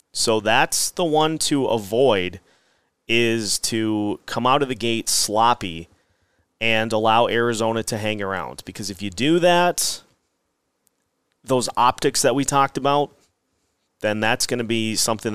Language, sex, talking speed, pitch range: English, male, 145 wpm, 100-130 Hz